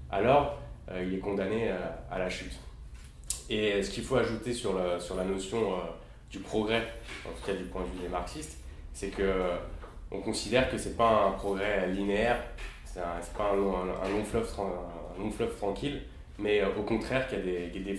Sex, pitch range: male, 85-100 Hz